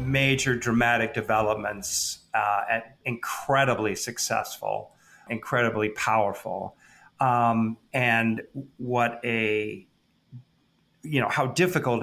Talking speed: 80 wpm